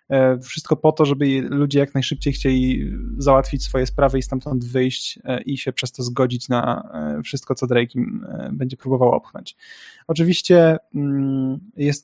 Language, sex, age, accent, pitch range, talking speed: Polish, male, 20-39, native, 130-145 Hz, 140 wpm